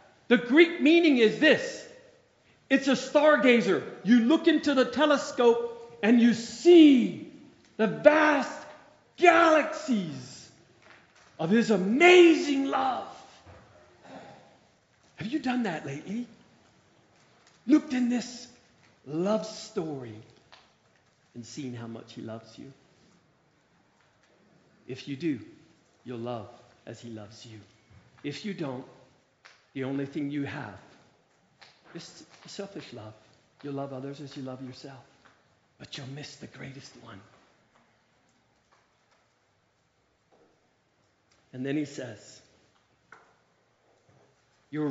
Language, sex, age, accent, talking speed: English, male, 50-69, American, 105 wpm